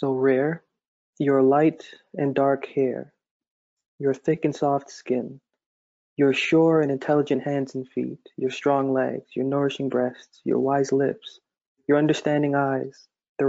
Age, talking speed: 20-39, 140 wpm